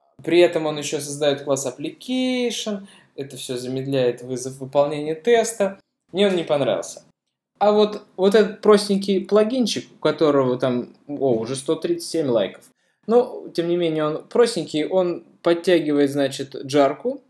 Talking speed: 140 wpm